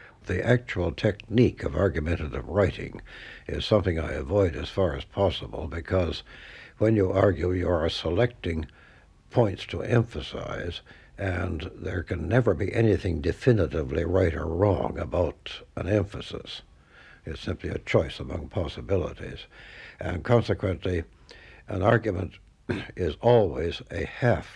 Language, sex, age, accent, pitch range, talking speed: English, male, 60-79, American, 80-100 Hz, 125 wpm